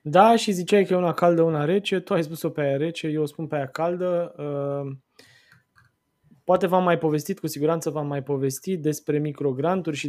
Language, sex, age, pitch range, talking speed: Romanian, male, 20-39, 145-165 Hz, 190 wpm